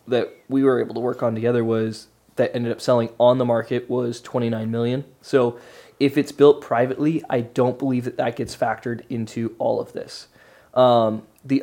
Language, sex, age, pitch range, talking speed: English, male, 20-39, 120-135 Hz, 190 wpm